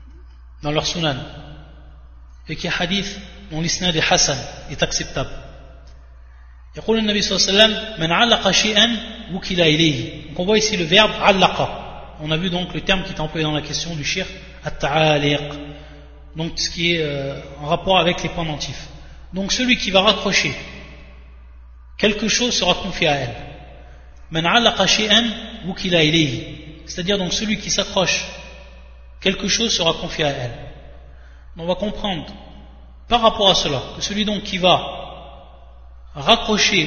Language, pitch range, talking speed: French, 140-195 Hz, 135 wpm